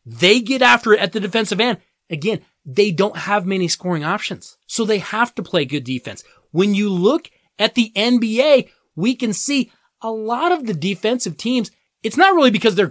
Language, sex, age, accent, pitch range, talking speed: English, male, 30-49, American, 180-250 Hz, 195 wpm